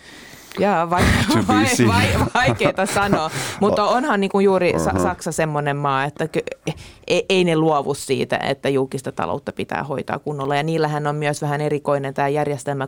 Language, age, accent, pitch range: Finnish, 30-49, native, 140-170 Hz